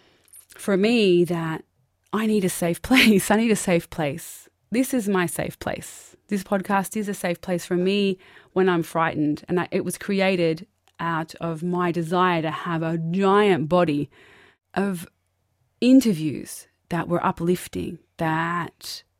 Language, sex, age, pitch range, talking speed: English, female, 20-39, 170-215 Hz, 155 wpm